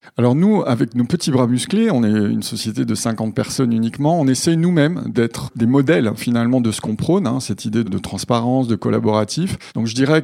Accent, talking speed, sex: French, 210 wpm, male